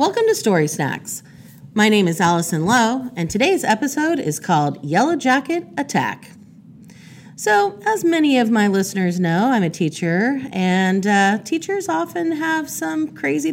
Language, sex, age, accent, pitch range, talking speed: English, female, 40-59, American, 160-235 Hz, 150 wpm